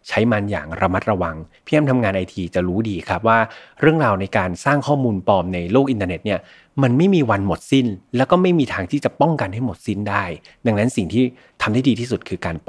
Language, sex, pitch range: Thai, male, 95-130 Hz